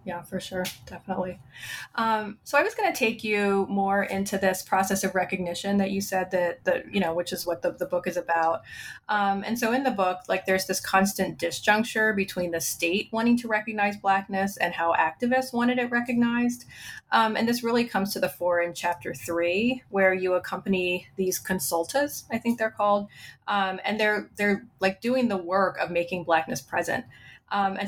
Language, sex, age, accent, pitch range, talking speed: English, female, 30-49, American, 180-215 Hz, 195 wpm